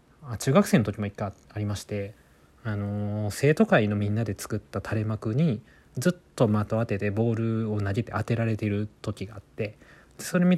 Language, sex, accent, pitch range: Japanese, male, native, 105-150 Hz